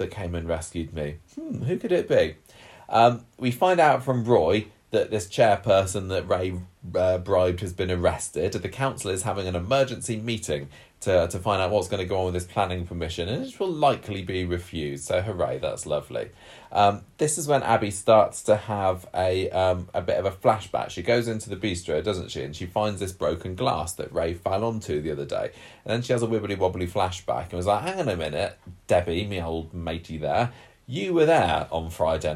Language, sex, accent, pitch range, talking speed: English, male, British, 90-130 Hz, 215 wpm